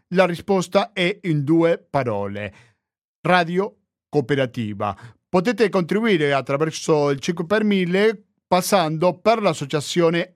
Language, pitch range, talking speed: Italian, 130-180 Hz, 105 wpm